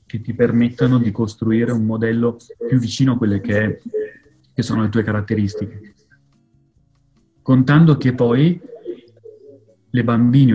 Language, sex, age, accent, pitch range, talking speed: Italian, male, 30-49, native, 110-130 Hz, 130 wpm